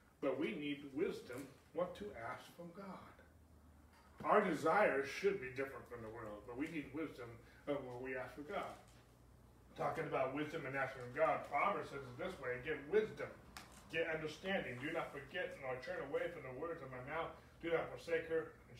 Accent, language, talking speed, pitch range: American, English, 190 wpm, 130-155 Hz